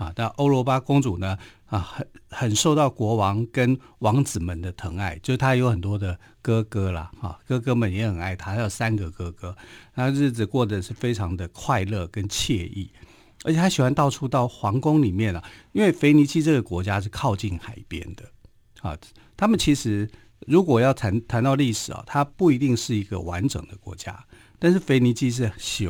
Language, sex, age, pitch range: Chinese, male, 50-69, 100-130 Hz